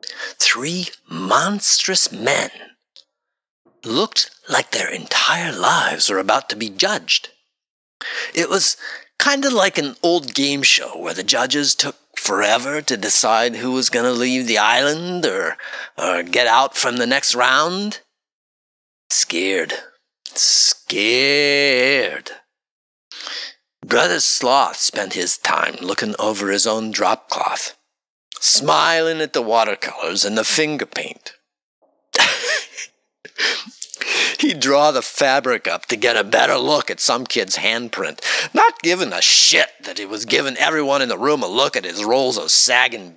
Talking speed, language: 135 wpm, English